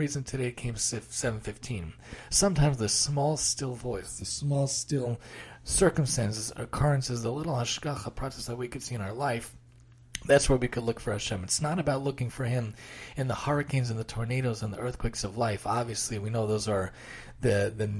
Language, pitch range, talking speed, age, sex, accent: English, 110-135 Hz, 185 wpm, 40-59, male, American